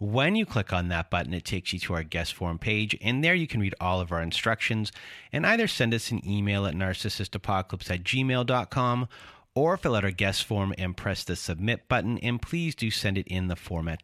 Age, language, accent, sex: 40-59, English, American, male